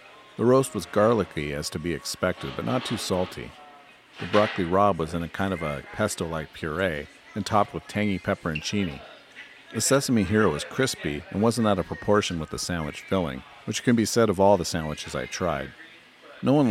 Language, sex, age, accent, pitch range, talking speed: English, male, 50-69, American, 85-105 Hz, 195 wpm